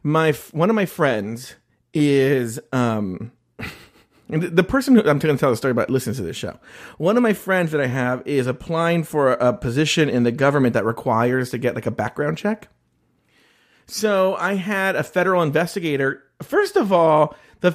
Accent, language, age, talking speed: American, English, 40-59, 185 wpm